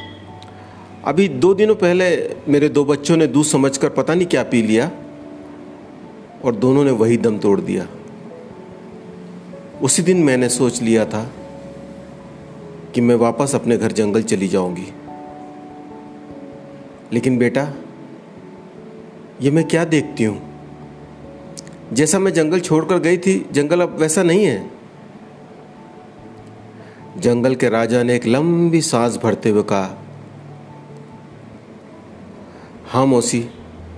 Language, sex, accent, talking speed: Hindi, male, native, 115 wpm